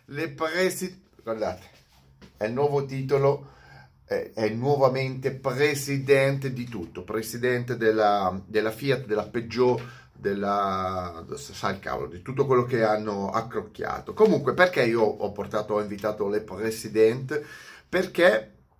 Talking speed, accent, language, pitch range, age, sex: 120 wpm, native, Italian, 105-140 Hz, 30-49, male